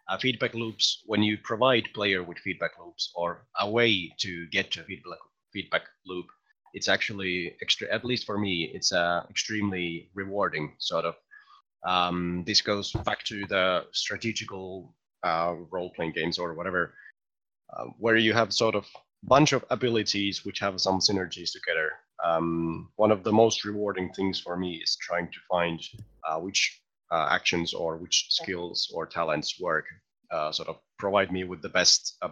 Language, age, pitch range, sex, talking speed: English, 30-49, 85-110 Hz, male, 170 wpm